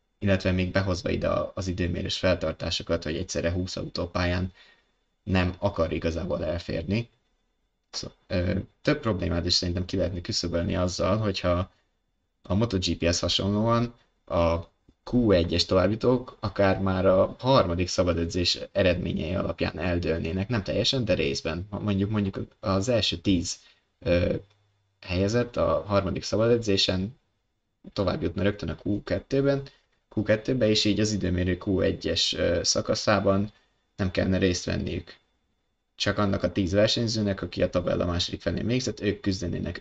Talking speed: 125 wpm